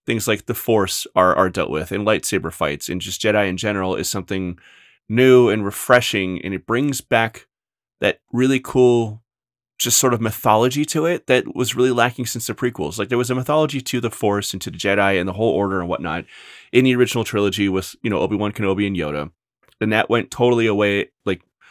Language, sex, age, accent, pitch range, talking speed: English, male, 30-49, American, 95-120 Hz, 210 wpm